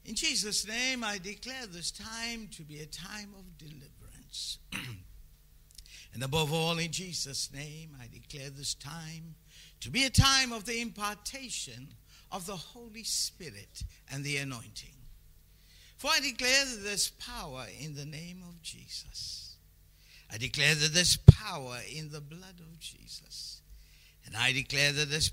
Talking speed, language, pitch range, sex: 140 wpm, English, 115-180 Hz, male